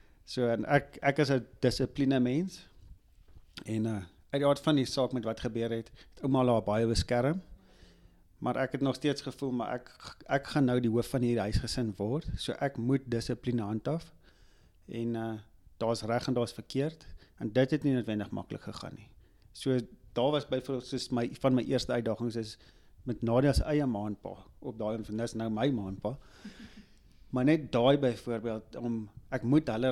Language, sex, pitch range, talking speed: English, male, 110-130 Hz, 195 wpm